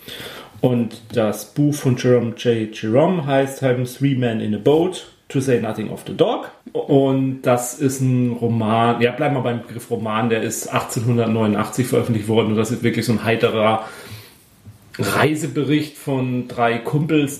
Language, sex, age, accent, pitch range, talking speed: German, male, 30-49, German, 115-145 Hz, 160 wpm